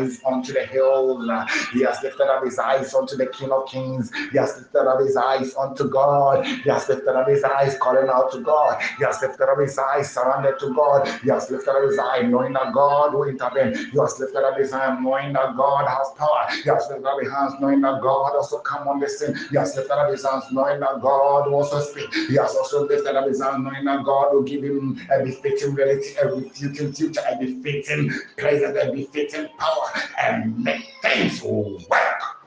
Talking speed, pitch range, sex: 220 wpm, 130-145 Hz, male